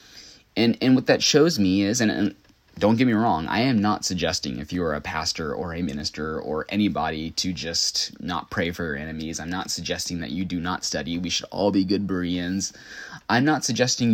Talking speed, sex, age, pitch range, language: 215 wpm, male, 20-39, 90-115 Hz, English